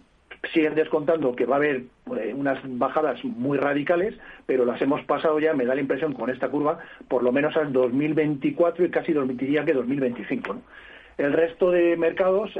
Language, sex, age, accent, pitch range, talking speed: Spanish, male, 40-59, Spanish, 130-155 Hz, 175 wpm